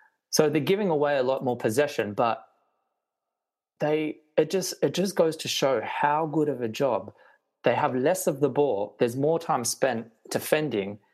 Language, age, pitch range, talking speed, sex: English, 20-39, 115-145 Hz, 180 wpm, male